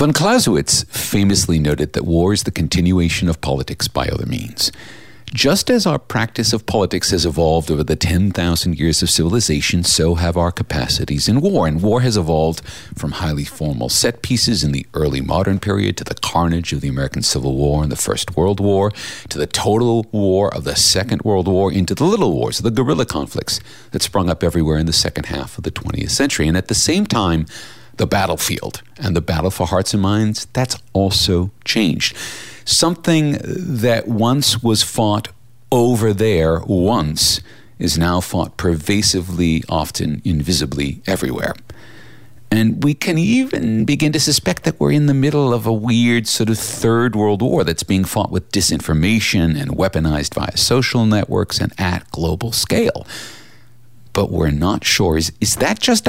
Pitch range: 85-115 Hz